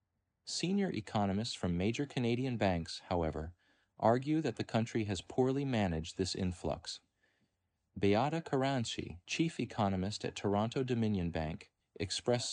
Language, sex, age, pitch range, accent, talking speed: English, male, 40-59, 95-125 Hz, American, 120 wpm